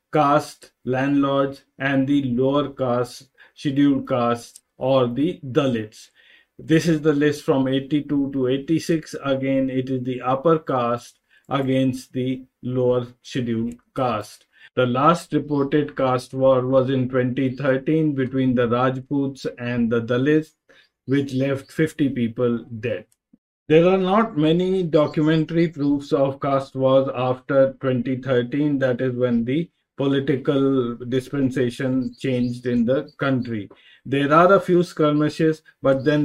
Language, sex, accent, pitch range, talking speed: English, male, Indian, 130-155 Hz, 125 wpm